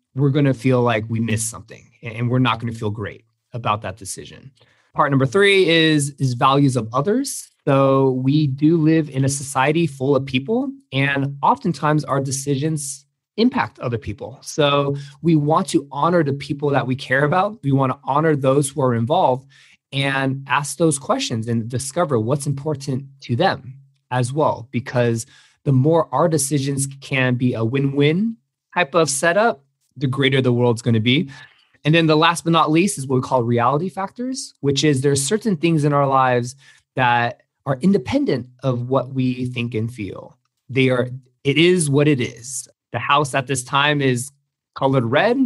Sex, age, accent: male, 20-39, American